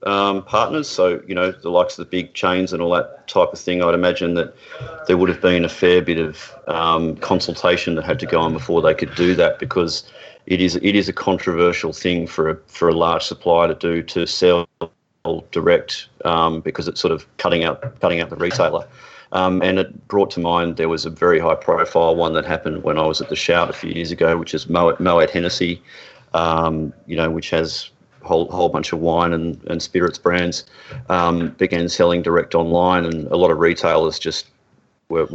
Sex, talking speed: male, 215 wpm